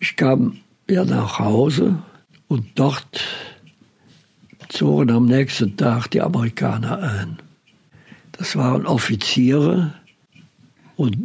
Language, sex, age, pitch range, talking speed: German, male, 60-79, 125-155 Hz, 95 wpm